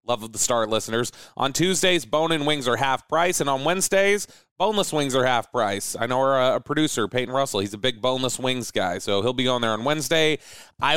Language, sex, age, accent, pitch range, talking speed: English, male, 30-49, American, 125-160 Hz, 230 wpm